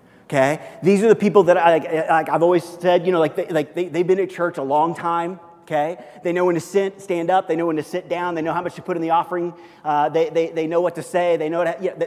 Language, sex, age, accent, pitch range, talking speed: English, male, 30-49, American, 135-170 Hz, 300 wpm